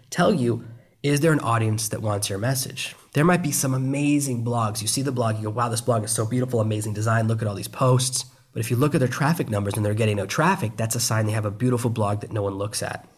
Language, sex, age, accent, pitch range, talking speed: English, male, 20-39, American, 110-135 Hz, 280 wpm